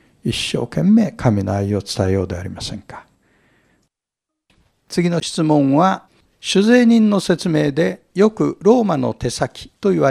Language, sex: Japanese, male